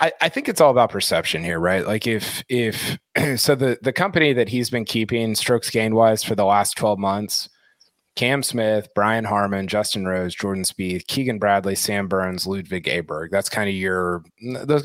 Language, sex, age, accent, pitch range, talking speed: English, male, 30-49, American, 95-120 Hz, 190 wpm